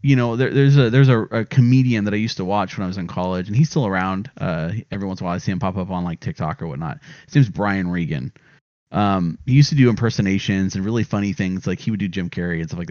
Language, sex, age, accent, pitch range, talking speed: English, male, 30-49, American, 100-140 Hz, 290 wpm